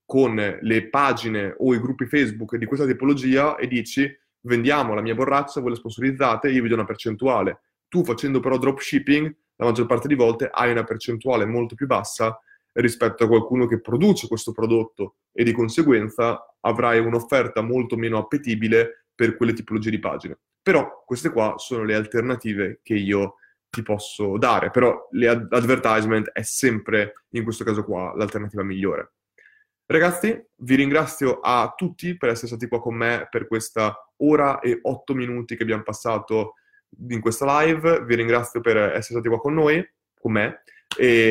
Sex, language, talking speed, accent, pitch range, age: male, Italian, 165 wpm, native, 110-135 Hz, 20-39